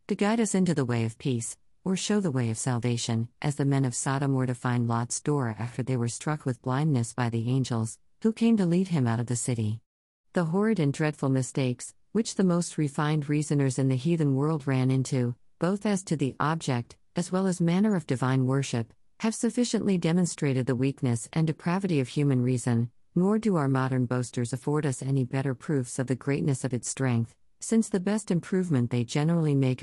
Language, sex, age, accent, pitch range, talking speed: English, female, 50-69, American, 125-170 Hz, 205 wpm